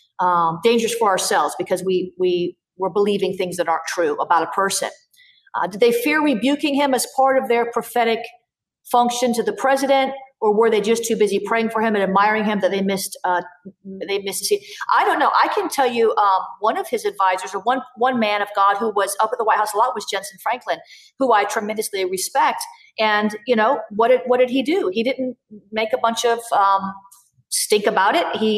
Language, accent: English, American